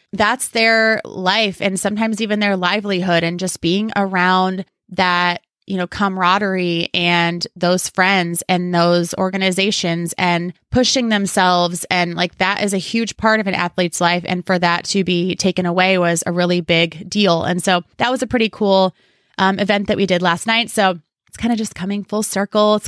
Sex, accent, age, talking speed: female, American, 20-39, 185 wpm